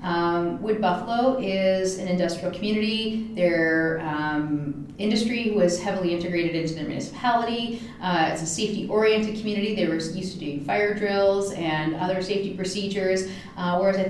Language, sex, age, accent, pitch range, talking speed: English, female, 30-49, American, 175-205 Hz, 150 wpm